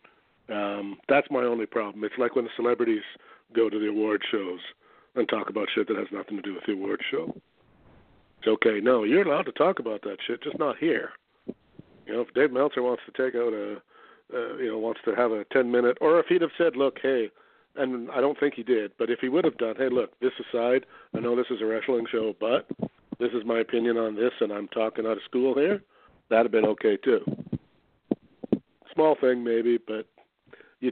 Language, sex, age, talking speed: English, male, 50-69, 220 wpm